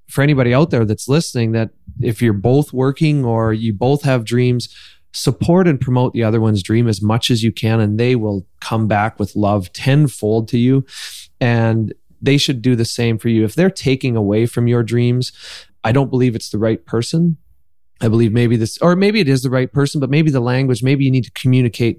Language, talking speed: English, 220 wpm